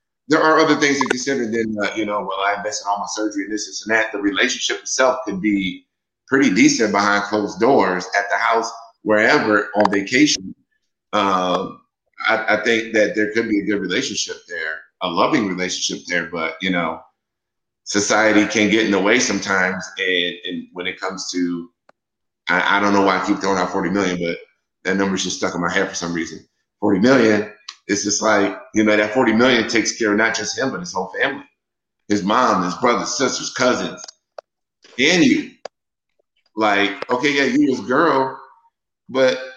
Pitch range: 100-125 Hz